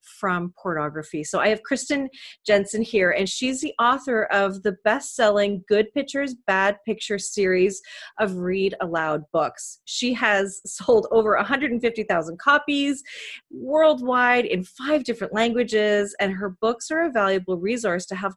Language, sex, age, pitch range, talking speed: English, female, 30-49, 180-245 Hz, 145 wpm